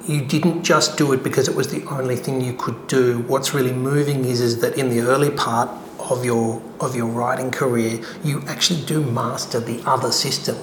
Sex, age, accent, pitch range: male, 40-59, Australian, 125-175 Hz